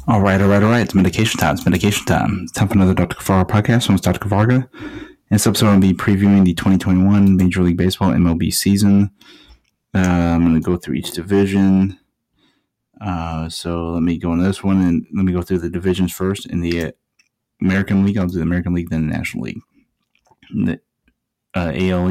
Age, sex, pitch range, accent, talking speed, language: 30-49, male, 90-100 Hz, American, 210 wpm, English